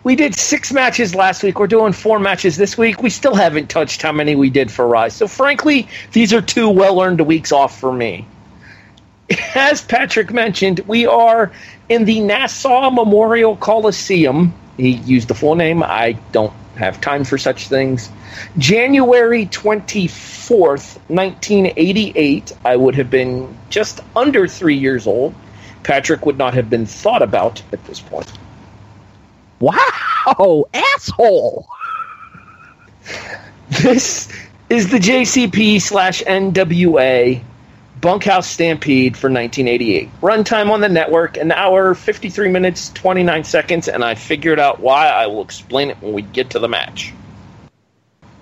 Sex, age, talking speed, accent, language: male, 40-59, 140 wpm, American, English